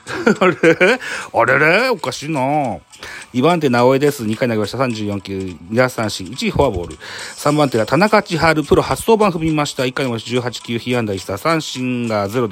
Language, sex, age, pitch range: Japanese, male, 40-59, 105-160 Hz